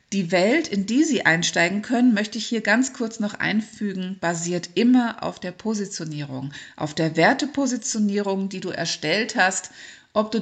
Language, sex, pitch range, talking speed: German, female, 170-225 Hz, 160 wpm